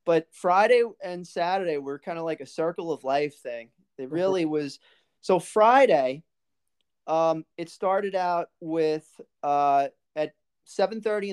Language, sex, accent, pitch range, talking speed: English, male, American, 150-180 Hz, 140 wpm